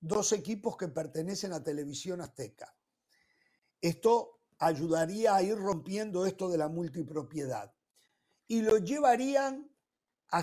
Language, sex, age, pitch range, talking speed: Spanish, male, 50-69, 165-230 Hz, 115 wpm